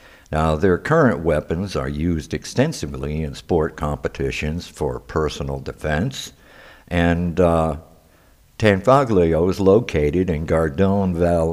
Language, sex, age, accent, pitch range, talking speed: English, male, 60-79, American, 75-90 Hz, 105 wpm